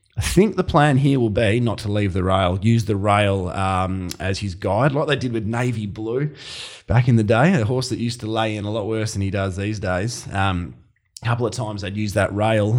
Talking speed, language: 240 wpm, English